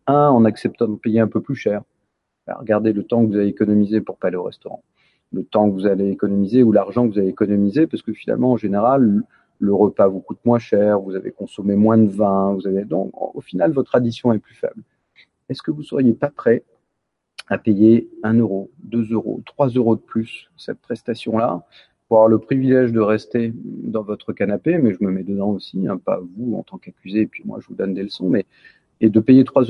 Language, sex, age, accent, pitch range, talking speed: French, male, 40-59, French, 105-125 Hz, 230 wpm